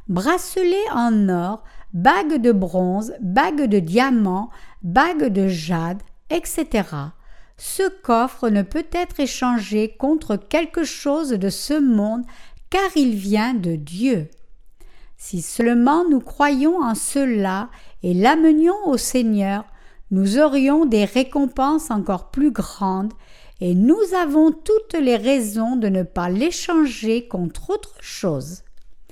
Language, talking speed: French, 125 wpm